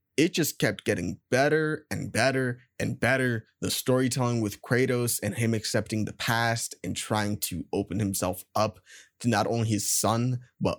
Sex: male